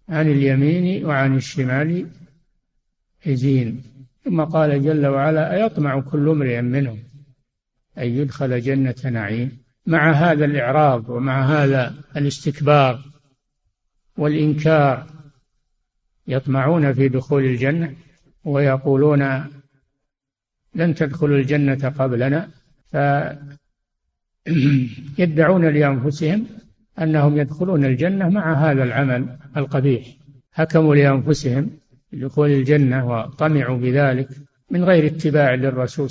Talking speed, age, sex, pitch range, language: 90 wpm, 60-79, male, 130-155 Hz, Arabic